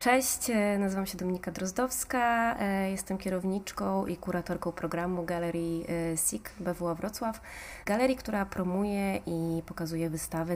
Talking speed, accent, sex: 115 wpm, native, female